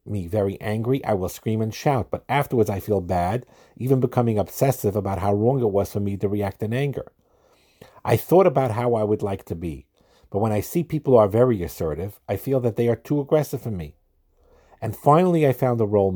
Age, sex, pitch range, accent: 50-69, male, 105-135 Hz, American